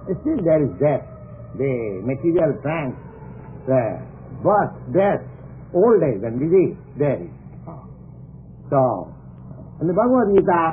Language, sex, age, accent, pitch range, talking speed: English, male, 60-79, Indian, 130-190 Hz, 125 wpm